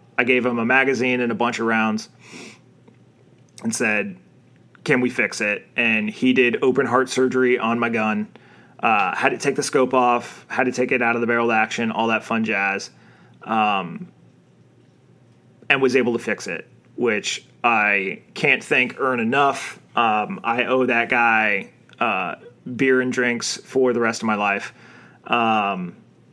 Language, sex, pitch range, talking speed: English, male, 115-125 Hz, 170 wpm